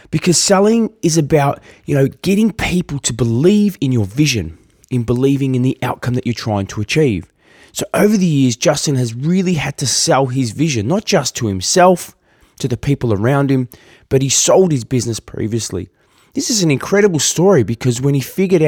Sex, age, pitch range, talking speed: male, 20-39, 120-160 Hz, 190 wpm